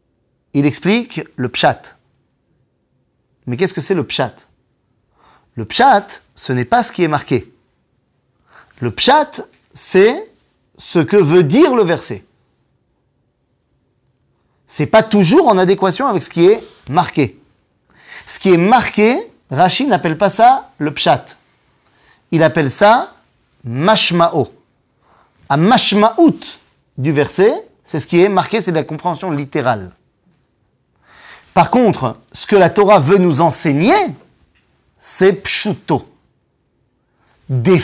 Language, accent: French, French